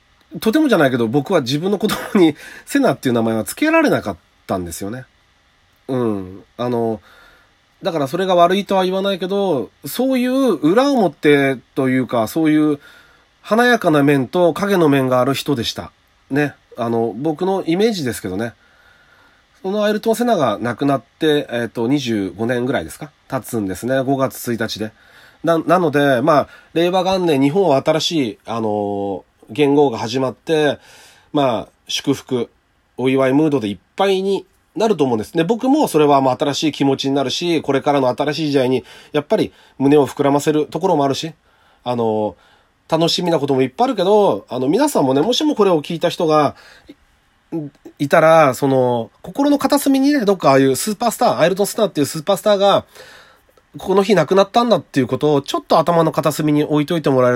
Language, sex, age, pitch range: Japanese, male, 30-49, 125-190 Hz